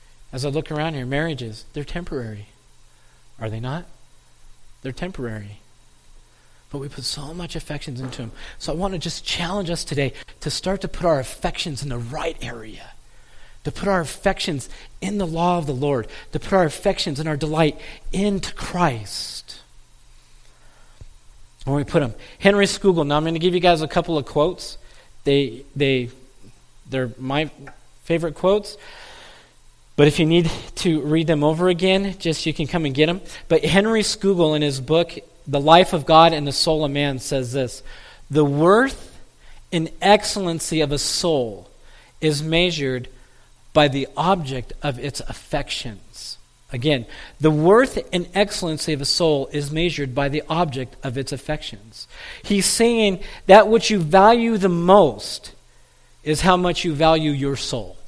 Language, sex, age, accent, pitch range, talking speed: English, male, 40-59, American, 130-175 Hz, 165 wpm